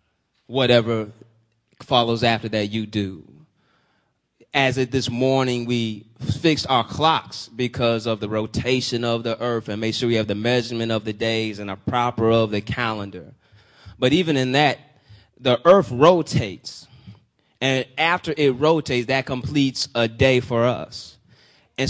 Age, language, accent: 20-39, English, American